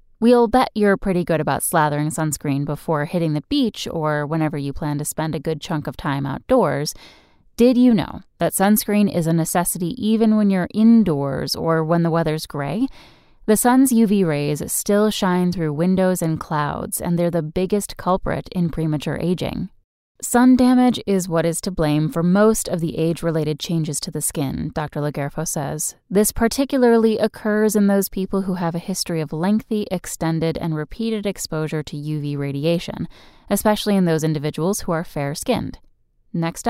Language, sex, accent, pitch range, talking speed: English, female, American, 155-215 Hz, 170 wpm